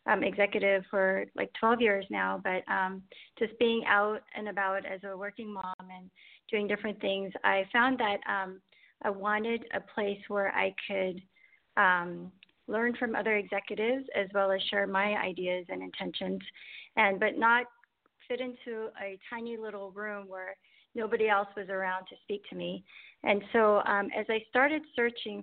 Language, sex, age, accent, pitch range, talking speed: English, female, 30-49, American, 190-220 Hz, 170 wpm